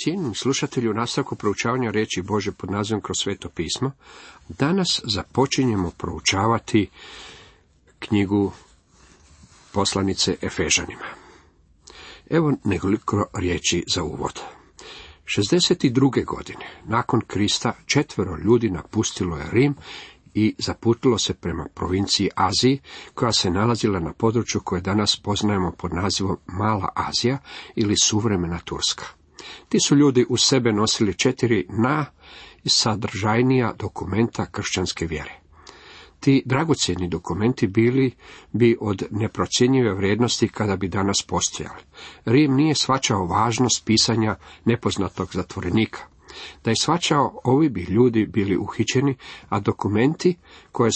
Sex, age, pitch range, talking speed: male, 50-69, 95-125 Hz, 110 wpm